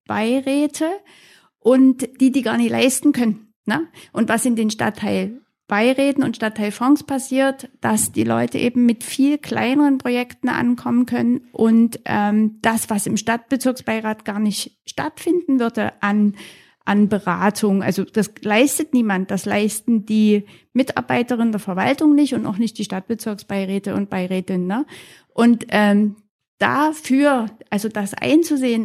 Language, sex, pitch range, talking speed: German, female, 210-265 Hz, 135 wpm